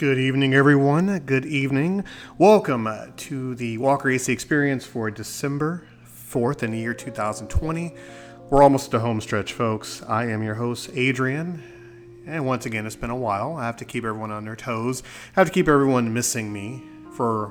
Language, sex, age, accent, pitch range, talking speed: English, male, 30-49, American, 110-135 Hz, 180 wpm